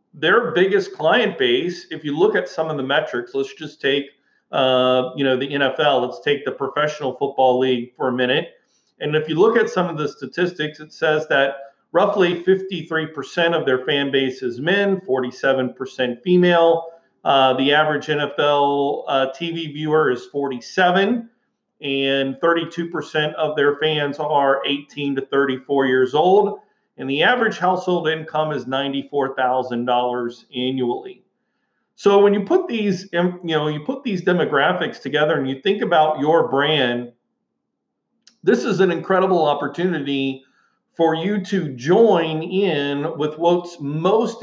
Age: 40-59